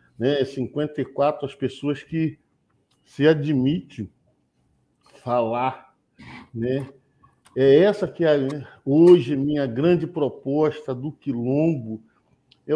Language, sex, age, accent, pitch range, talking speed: Portuguese, male, 50-69, Brazilian, 135-190 Hz, 90 wpm